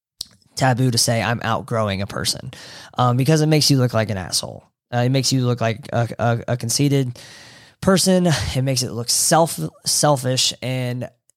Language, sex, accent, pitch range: English, male, American, 115-135 Hz